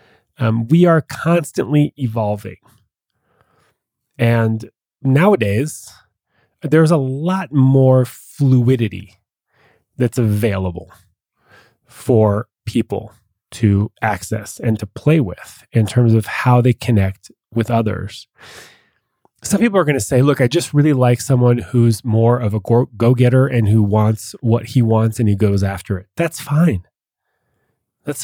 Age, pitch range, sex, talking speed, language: 30-49, 105-135 Hz, male, 130 wpm, English